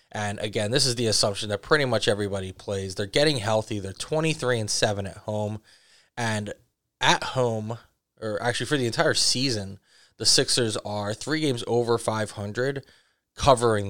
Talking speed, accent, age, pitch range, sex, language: 160 wpm, American, 20-39, 105-120 Hz, male, English